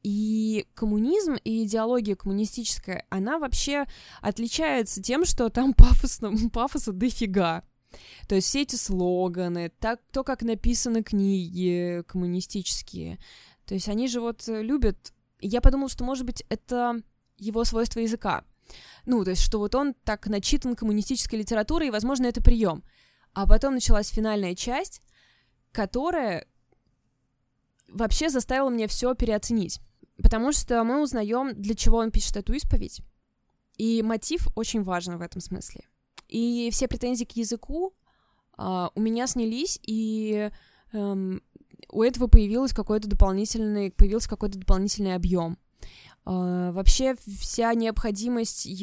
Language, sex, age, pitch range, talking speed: Russian, female, 20-39, 195-245 Hz, 125 wpm